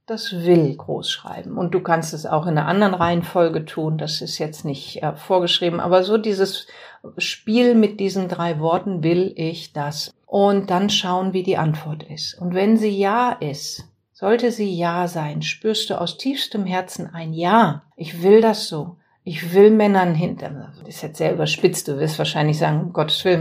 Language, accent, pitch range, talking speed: German, German, 170-225 Hz, 185 wpm